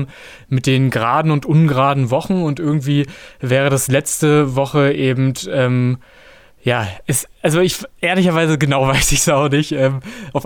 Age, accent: 20-39, German